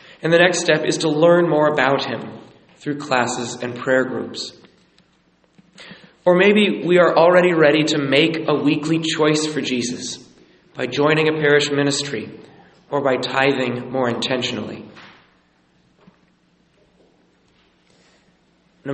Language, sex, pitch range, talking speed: English, male, 130-165 Hz, 125 wpm